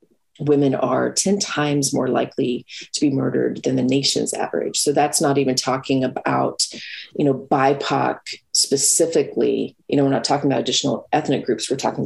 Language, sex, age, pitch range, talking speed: English, female, 30-49, 130-150 Hz, 170 wpm